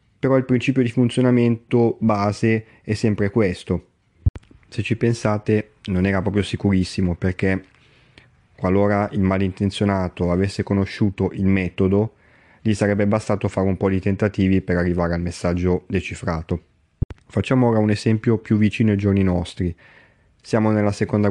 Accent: native